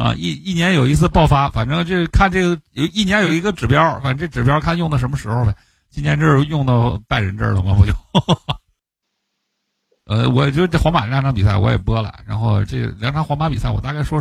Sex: male